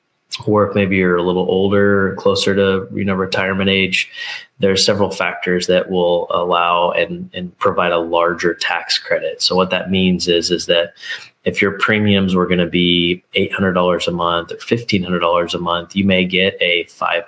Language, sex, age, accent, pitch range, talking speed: English, male, 20-39, American, 90-100 Hz, 200 wpm